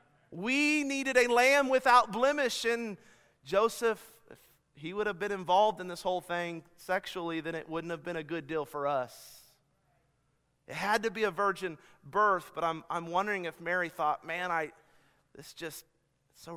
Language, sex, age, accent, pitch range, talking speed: English, male, 40-59, American, 150-215 Hz, 180 wpm